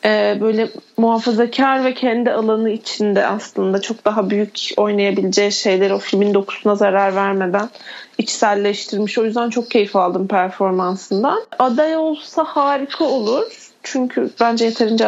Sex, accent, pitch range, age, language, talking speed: female, native, 210-280 Hz, 40-59, Turkish, 125 wpm